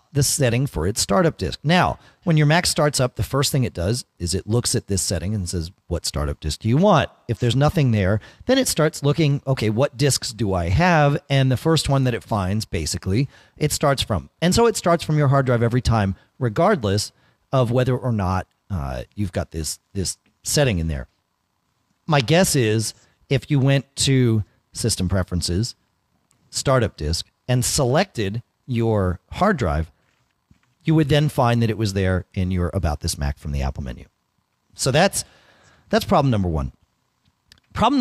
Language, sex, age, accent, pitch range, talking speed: English, male, 40-59, American, 100-145 Hz, 190 wpm